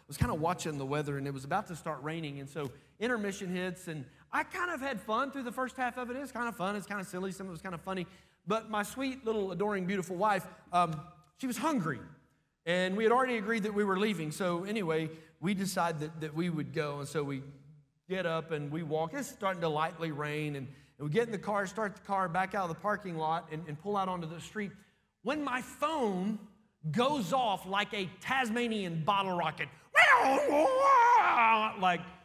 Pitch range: 155-205 Hz